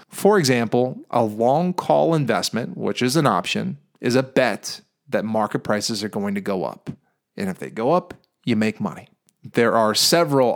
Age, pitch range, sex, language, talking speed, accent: 30-49, 110-135 Hz, male, English, 180 wpm, American